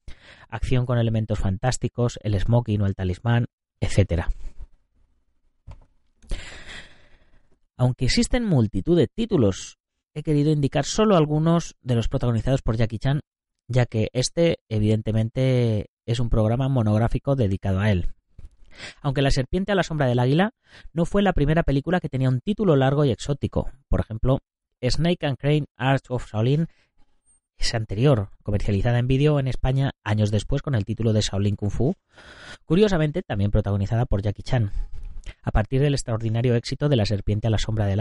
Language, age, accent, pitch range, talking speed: Spanish, 30-49, Spanish, 100-135 Hz, 155 wpm